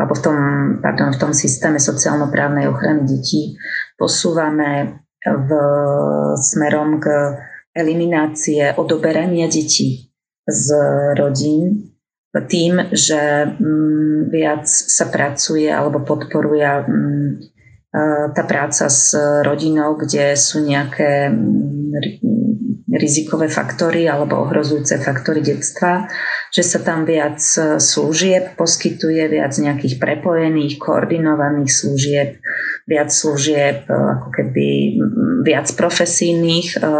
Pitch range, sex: 145-160 Hz, female